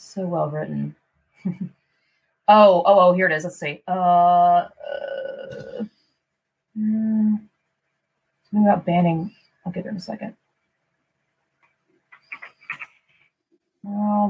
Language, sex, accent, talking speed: English, female, American, 95 wpm